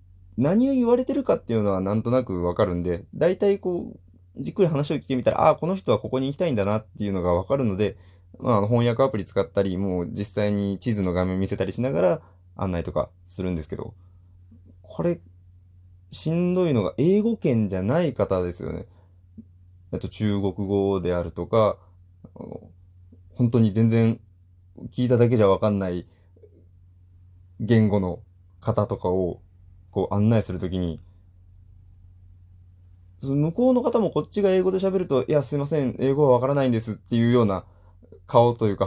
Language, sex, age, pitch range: Japanese, male, 20-39, 90-120 Hz